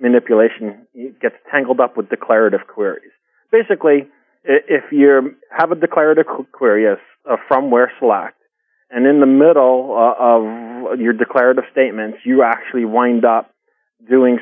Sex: male